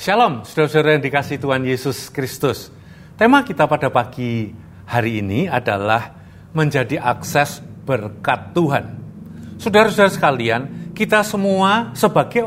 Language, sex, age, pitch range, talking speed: Indonesian, male, 50-69, 125-185 Hz, 110 wpm